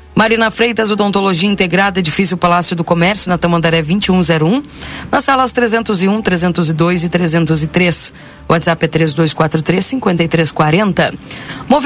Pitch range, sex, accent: 170-220 Hz, female, Brazilian